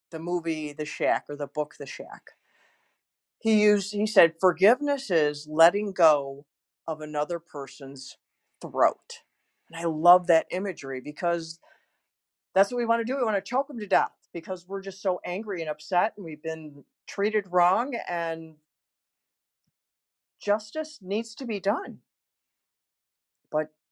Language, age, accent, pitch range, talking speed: English, 50-69, American, 145-195 Hz, 150 wpm